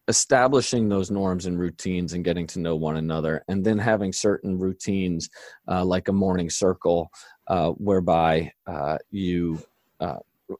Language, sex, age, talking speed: English, male, 30-49, 145 wpm